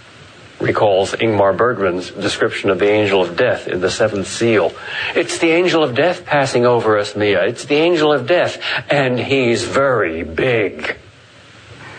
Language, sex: English, male